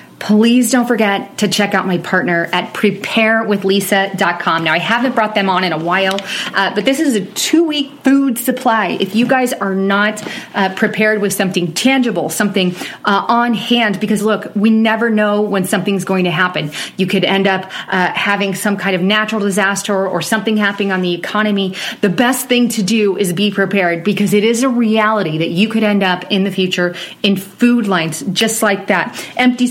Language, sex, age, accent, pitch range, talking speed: English, female, 30-49, American, 190-230 Hz, 195 wpm